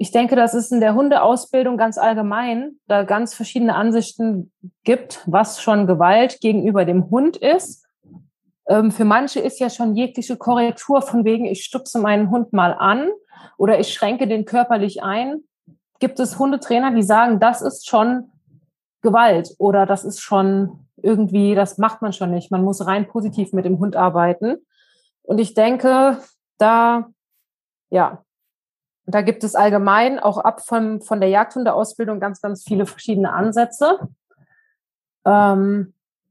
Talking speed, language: 150 wpm, German